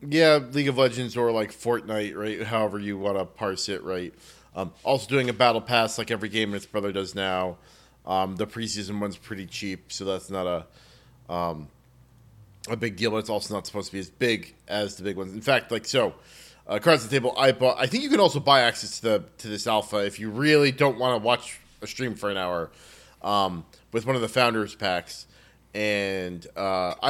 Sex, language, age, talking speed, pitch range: male, English, 30-49, 220 wpm, 100-130 Hz